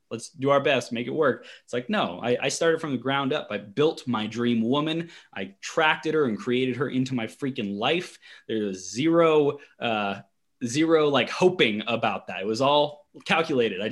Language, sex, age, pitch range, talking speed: English, male, 20-39, 105-130 Hz, 190 wpm